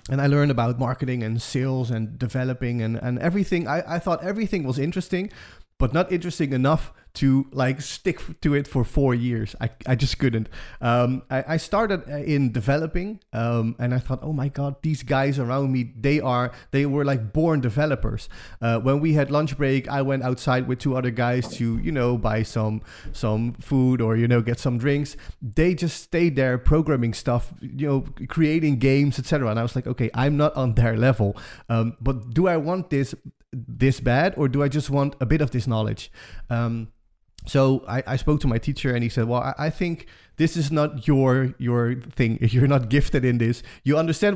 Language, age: English, 30-49